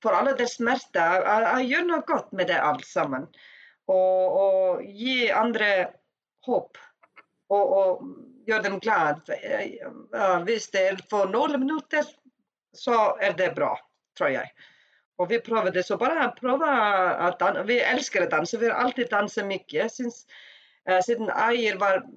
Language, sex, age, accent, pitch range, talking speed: Swedish, female, 40-59, native, 190-260 Hz, 135 wpm